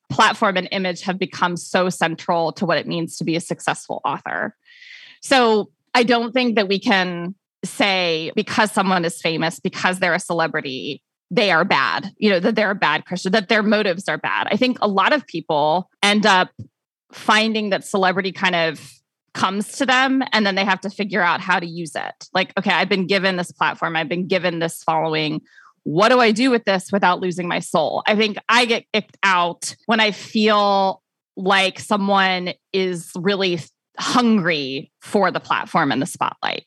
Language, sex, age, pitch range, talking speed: English, female, 20-39, 170-210 Hz, 190 wpm